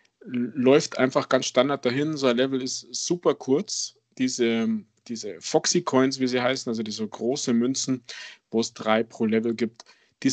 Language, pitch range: German, 115-135 Hz